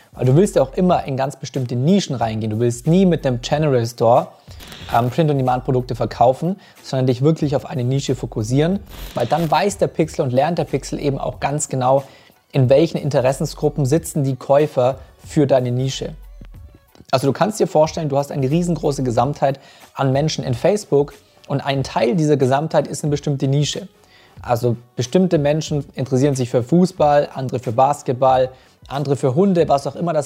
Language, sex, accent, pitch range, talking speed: German, male, German, 130-160 Hz, 175 wpm